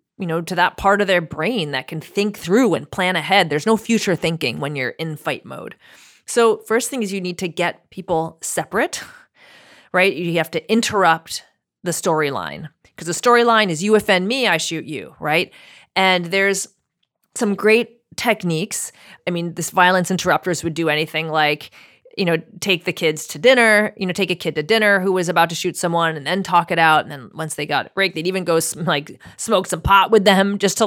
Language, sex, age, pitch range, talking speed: English, female, 30-49, 165-205 Hz, 210 wpm